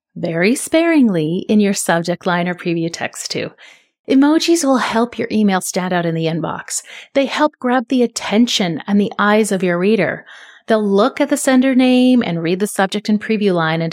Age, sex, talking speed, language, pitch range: 30-49, female, 195 wpm, English, 180-235 Hz